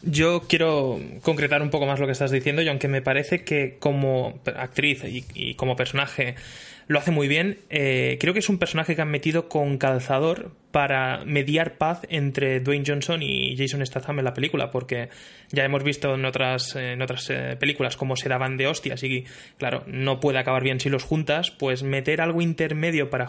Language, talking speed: Spanish, 195 wpm